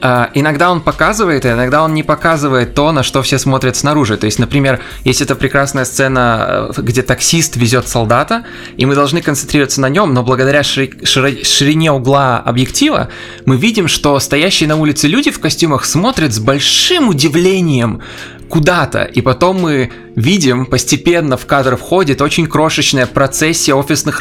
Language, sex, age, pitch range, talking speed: Russian, male, 20-39, 130-165 Hz, 150 wpm